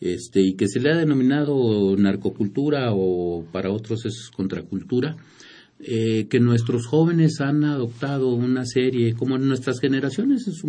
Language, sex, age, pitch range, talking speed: Spanish, male, 50-69, 100-135 Hz, 150 wpm